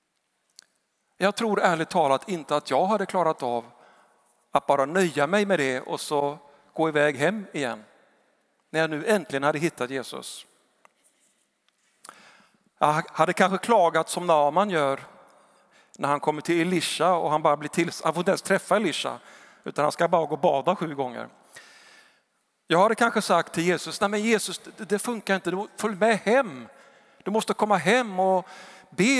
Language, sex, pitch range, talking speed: Swedish, male, 145-195 Hz, 170 wpm